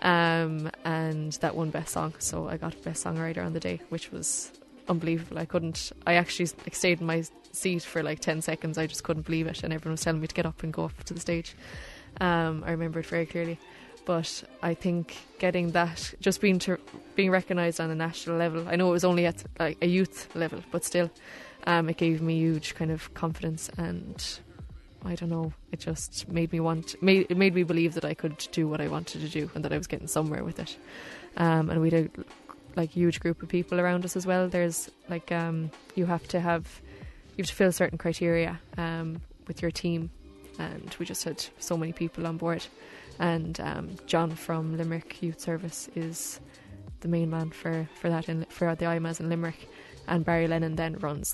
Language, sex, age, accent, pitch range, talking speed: English, female, 20-39, Irish, 160-170 Hz, 215 wpm